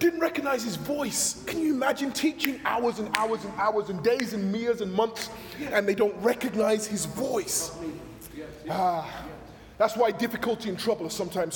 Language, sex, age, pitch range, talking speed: English, male, 20-39, 180-280 Hz, 170 wpm